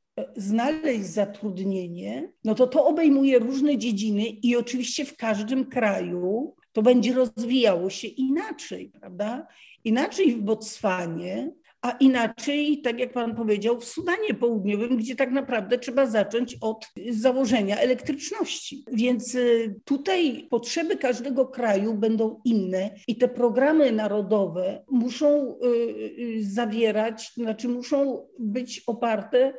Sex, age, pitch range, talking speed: female, 50-69, 215-260 Hz, 115 wpm